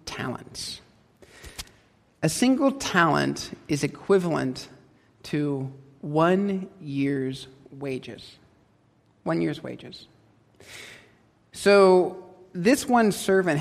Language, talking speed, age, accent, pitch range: English, 75 wpm, 50-69, American, 135-200 Hz